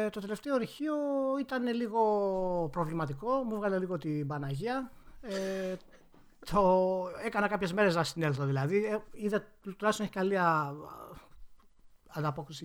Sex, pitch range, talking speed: male, 140-195 Hz, 110 wpm